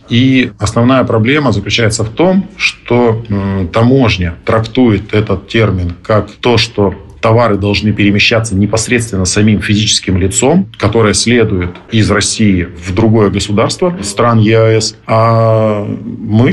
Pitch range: 95-115 Hz